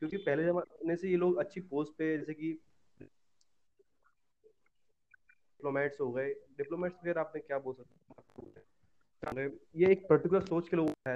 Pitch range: 140-180 Hz